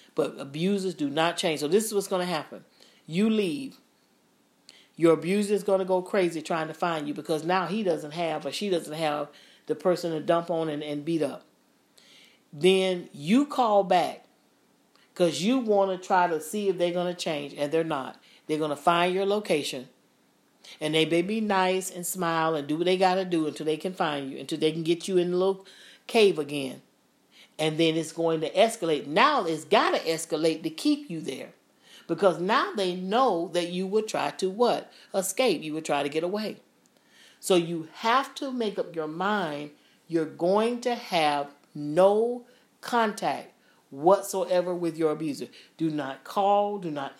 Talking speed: 195 wpm